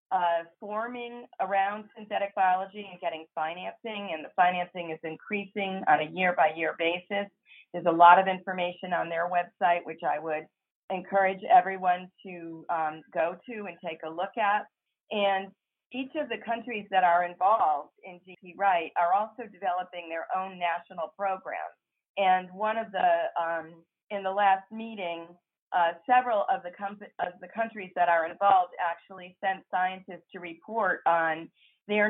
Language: English